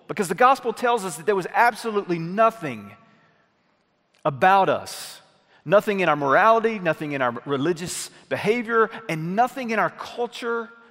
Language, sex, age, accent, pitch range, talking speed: English, male, 40-59, American, 140-195 Hz, 145 wpm